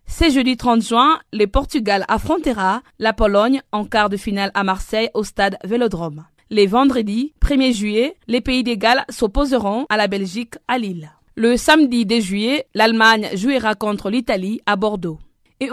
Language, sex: French, female